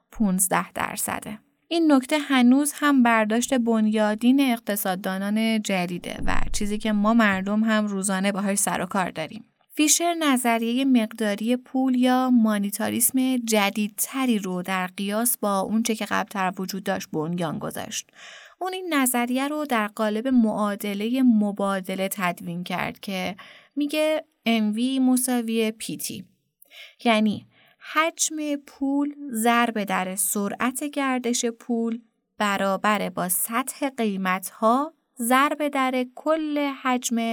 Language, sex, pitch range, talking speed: Persian, female, 205-260 Hz, 115 wpm